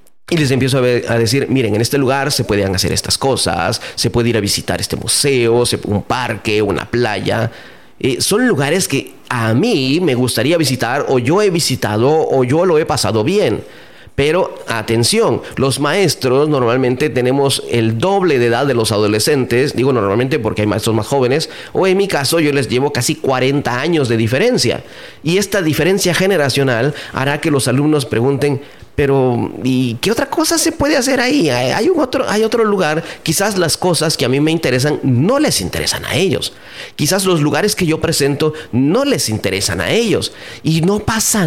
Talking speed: 185 wpm